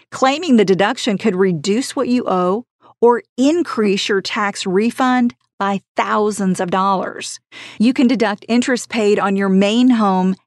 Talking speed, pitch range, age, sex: 150 wpm, 190-240 Hz, 40-59, female